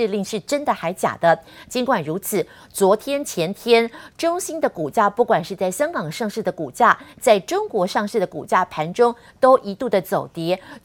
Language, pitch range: Chinese, 180-240 Hz